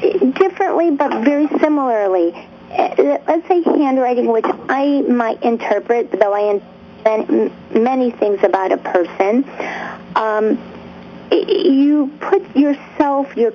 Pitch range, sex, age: 210-285 Hz, female, 50-69